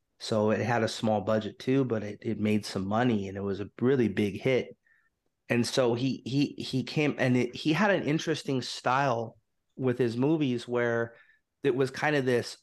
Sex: male